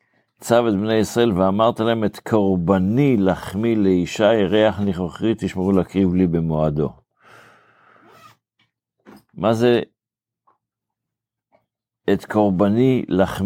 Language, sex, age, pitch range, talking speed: Hebrew, male, 50-69, 85-105 Hz, 130 wpm